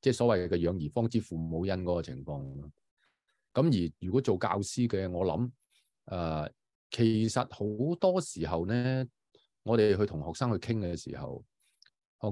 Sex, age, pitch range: male, 20-39, 85-115 Hz